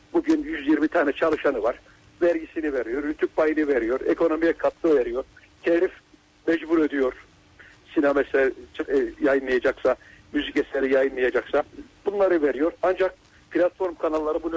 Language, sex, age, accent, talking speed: Turkish, male, 60-79, native, 105 wpm